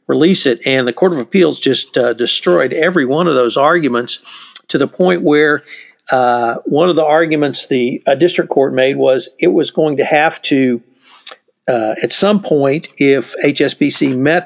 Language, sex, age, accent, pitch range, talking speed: English, male, 50-69, American, 135-180 Hz, 175 wpm